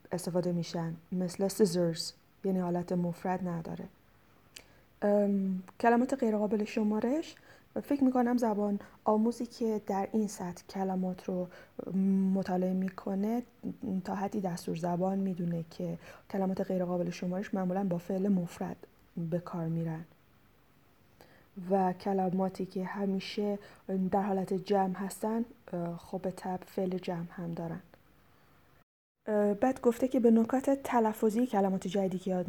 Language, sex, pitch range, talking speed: Persian, female, 180-205 Hz, 120 wpm